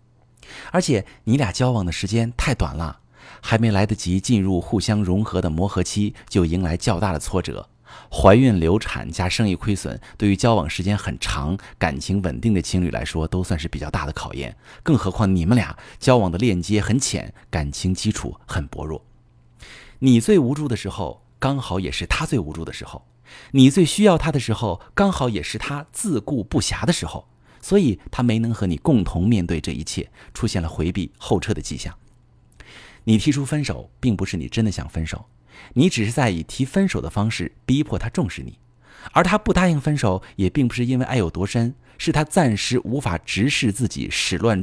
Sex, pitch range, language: male, 90-125 Hz, Chinese